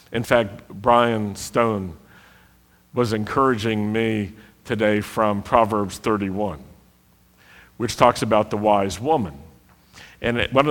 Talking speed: 105 wpm